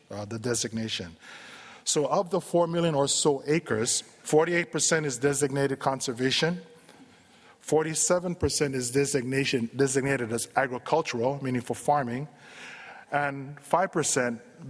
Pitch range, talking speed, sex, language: 120-150 Hz, 105 wpm, male, English